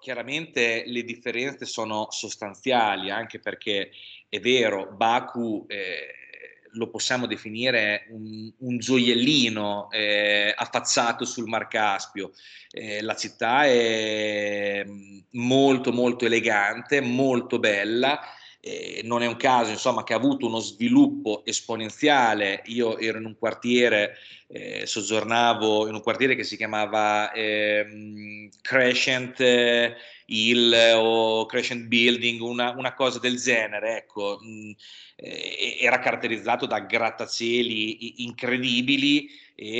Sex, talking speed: male, 115 wpm